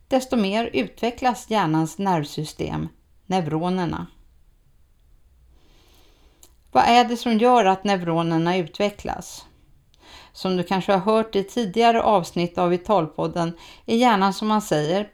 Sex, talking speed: female, 115 wpm